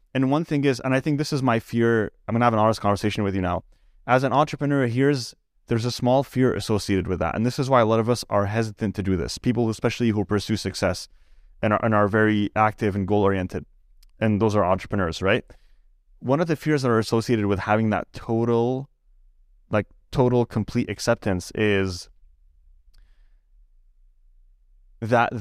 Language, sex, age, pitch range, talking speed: English, male, 20-39, 100-125 Hz, 190 wpm